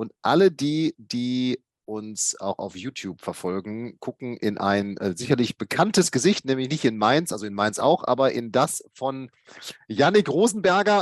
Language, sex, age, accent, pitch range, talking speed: German, male, 30-49, German, 120-155 Hz, 165 wpm